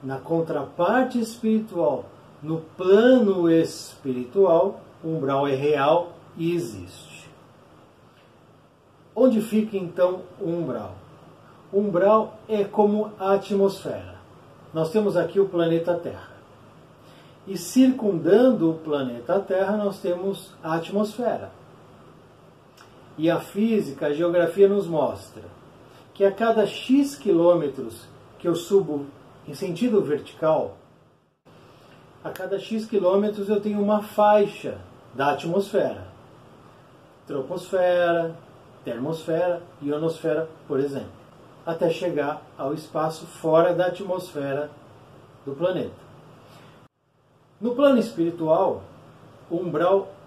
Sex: male